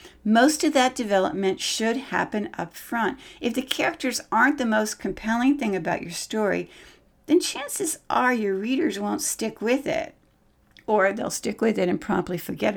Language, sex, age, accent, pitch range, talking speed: English, female, 60-79, American, 180-250 Hz, 170 wpm